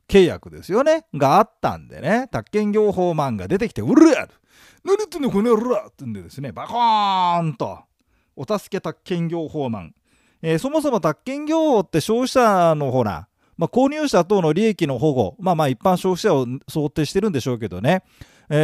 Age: 40-59